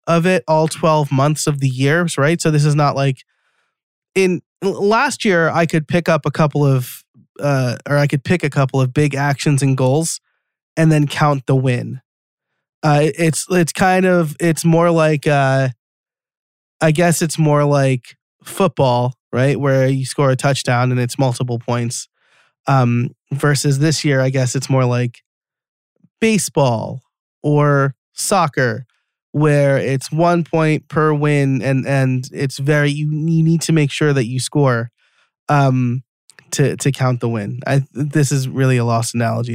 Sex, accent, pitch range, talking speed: male, American, 130-155 Hz, 165 wpm